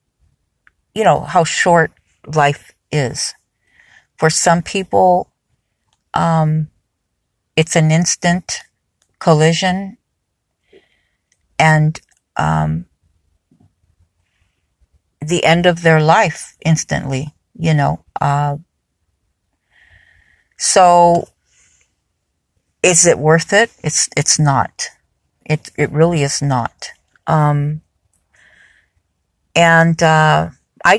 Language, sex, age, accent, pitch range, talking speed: English, female, 40-59, American, 115-170 Hz, 80 wpm